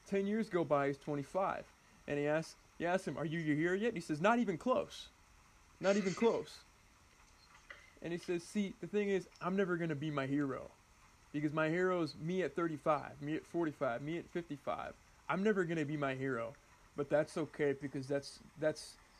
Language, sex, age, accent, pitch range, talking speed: English, male, 20-39, American, 150-195 Hz, 205 wpm